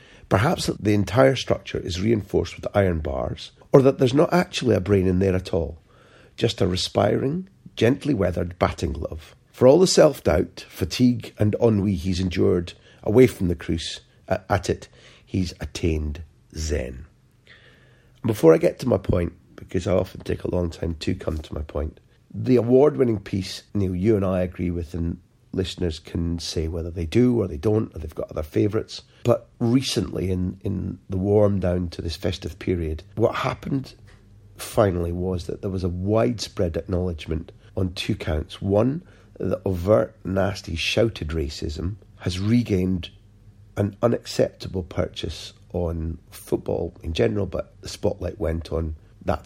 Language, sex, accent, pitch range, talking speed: English, male, British, 85-110 Hz, 165 wpm